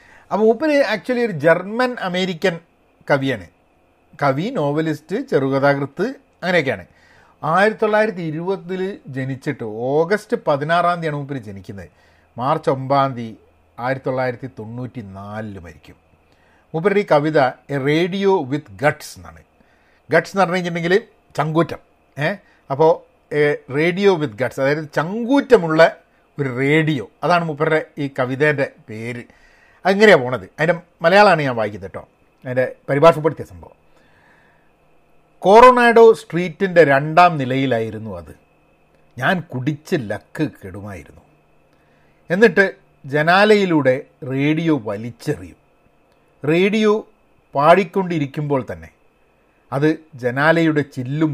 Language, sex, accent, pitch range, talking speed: Malayalam, male, native, 125-175 Hz, 95 wpm